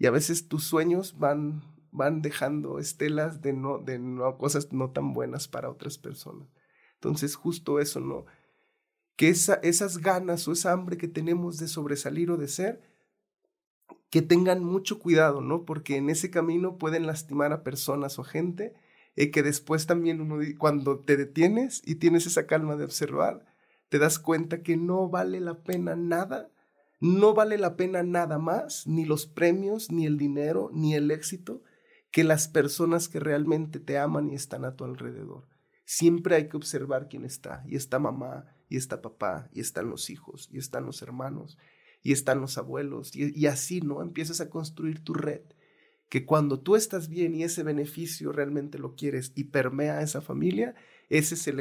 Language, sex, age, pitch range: Spanish, male, 30-49, 145-170 Hz